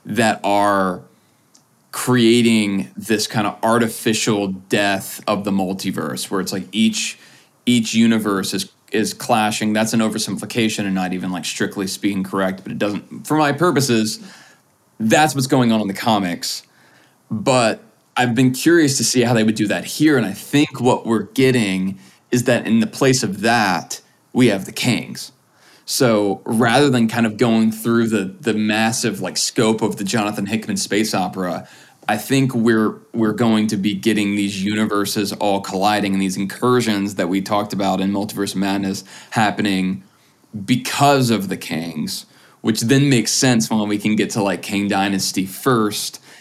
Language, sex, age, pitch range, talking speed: English, male, 20-39, 100-120 Hz, 170 wpm